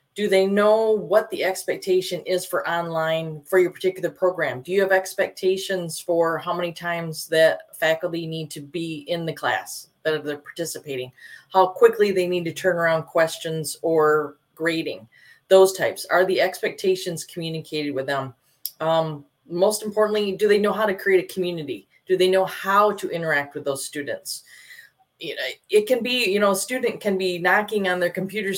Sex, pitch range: female, 150-190 Hz